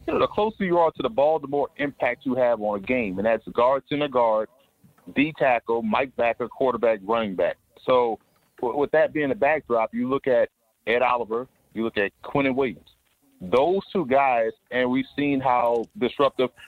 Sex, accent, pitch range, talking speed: male, American, 120-150 Hz, 190 wpm